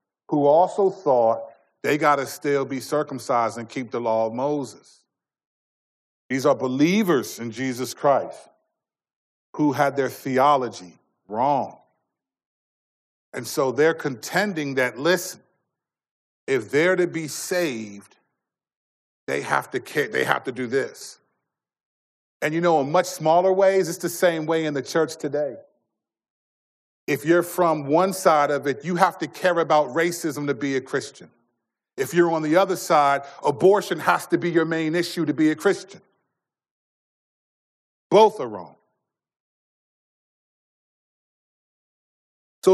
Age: 40-59